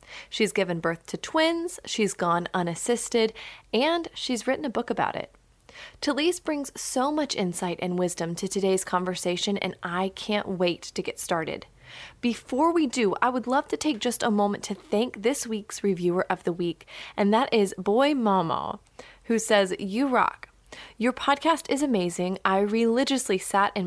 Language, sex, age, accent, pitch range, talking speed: English, female, 30-49, American, 185-255 Hz, 170 wpm